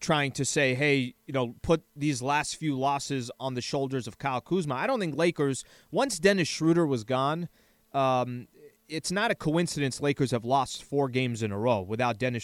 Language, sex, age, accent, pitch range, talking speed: English, male, 30-49, American, 130-170 Hz, 200 wpm